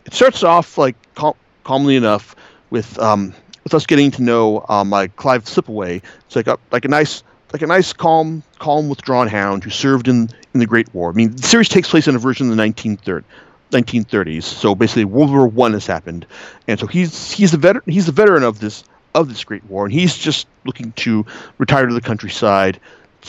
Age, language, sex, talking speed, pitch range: 40-59, English, male, 210 wpm, 110-145 Hz